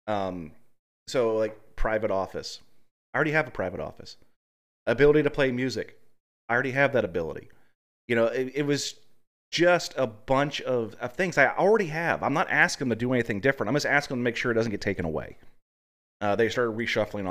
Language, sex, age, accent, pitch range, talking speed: English, male, 30-49, American, 95-135 Hz, 200 wpm